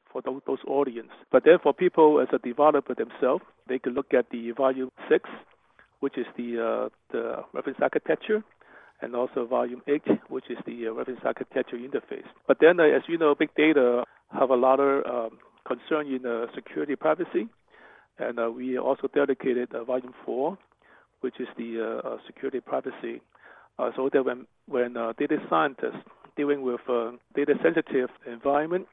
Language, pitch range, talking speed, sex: English, 125-145 Hz, 170 wpm, male